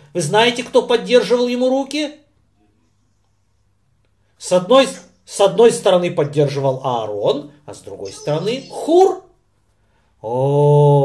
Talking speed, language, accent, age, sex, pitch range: 105 wpm, Russian, native, 40-59, male, 165-240 Hz